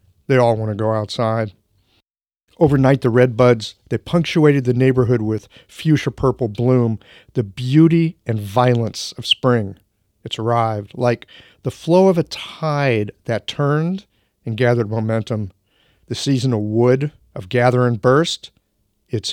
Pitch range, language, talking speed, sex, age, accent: 110-135 Hz, English, 145 wpm, male, 50-69, American